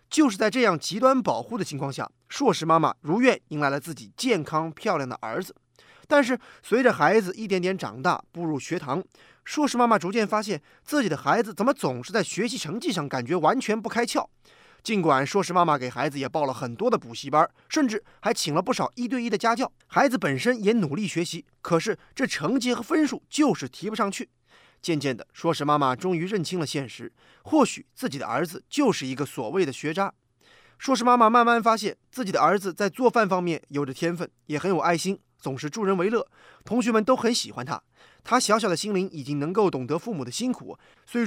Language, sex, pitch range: Chinese, male, 150-230 Hz